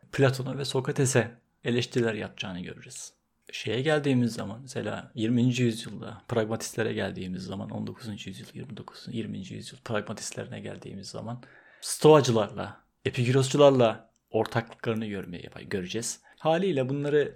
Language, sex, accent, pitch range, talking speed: Turkish, male, native, 115-145 Hz, 105 wpm